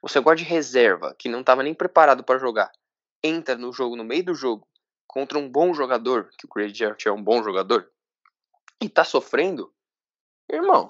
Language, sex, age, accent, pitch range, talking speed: Portuguese, male, 10-29, Brazilian, 120-155 Hz, 195 wpm